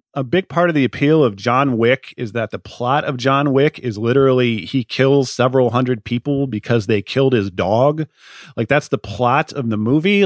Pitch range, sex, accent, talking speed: 115-140 Hz, male, American, 205 wpm